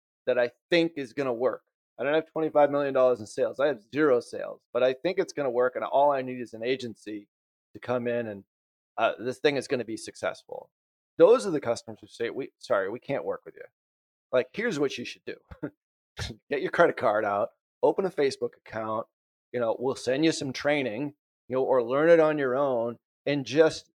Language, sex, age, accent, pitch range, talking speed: English, male, 30-49, American, 120-165 Hz, 225 wpm